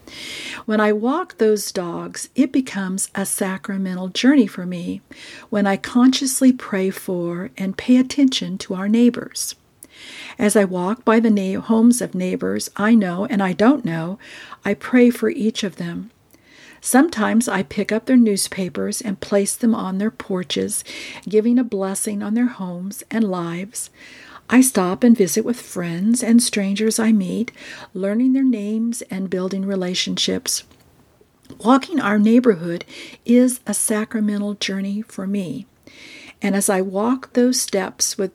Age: 50-69